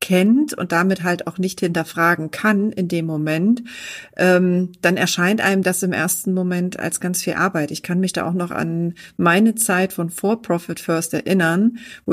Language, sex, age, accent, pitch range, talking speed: German, female, 40-59, German, 165-205 Hz, 190 wpm